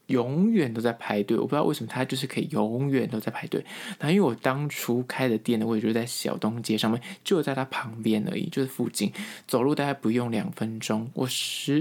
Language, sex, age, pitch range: Chinese, male, 20-39, 110-145 Hz